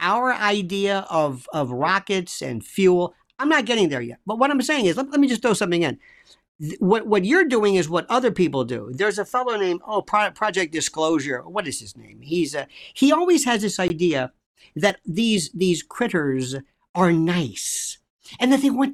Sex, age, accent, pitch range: male, 50-69, American, 165-255 Hz